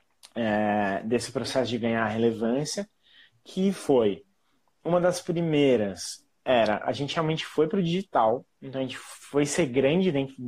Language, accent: Portuguese, Brazilian